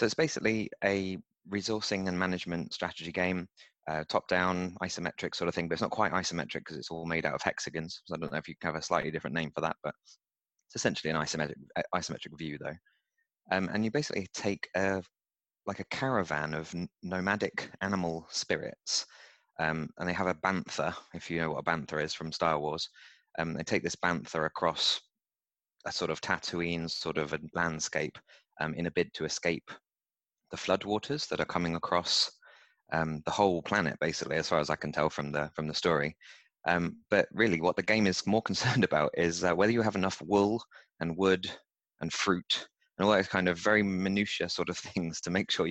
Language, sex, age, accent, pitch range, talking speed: English, male, 20-39, British, 80-95 Hz, 205 wpm